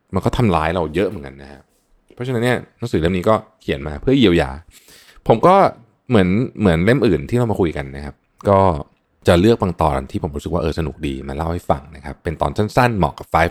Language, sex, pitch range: Thai, male, 85-120 Hz